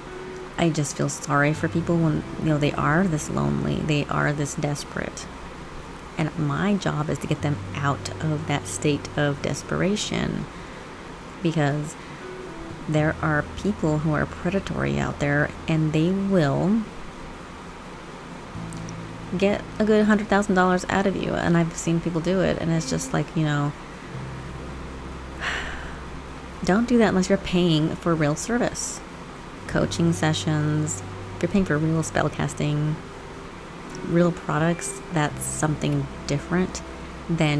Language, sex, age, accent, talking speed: English, female, 30-49, American, 135 wpm